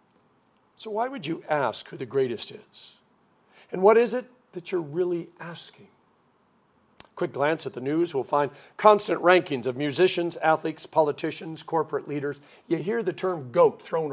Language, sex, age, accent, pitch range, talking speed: English, male, 50-69, American, 135-180 Hz, 160 wpm